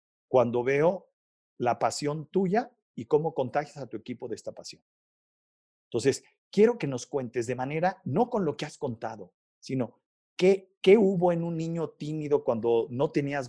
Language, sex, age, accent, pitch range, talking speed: Spanish, male, 50-69, Mexican, 120-160 Hz, 170 wpm